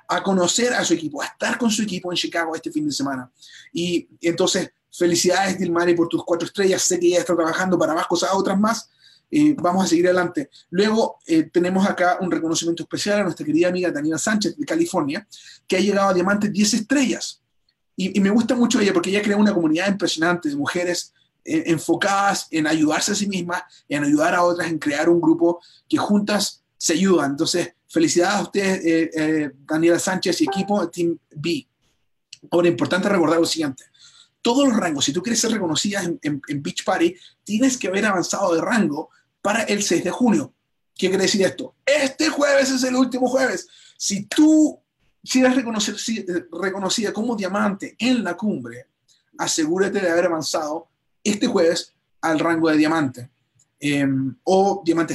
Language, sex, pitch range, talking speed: Spanish, male, 165-215 Hz, 185 wpm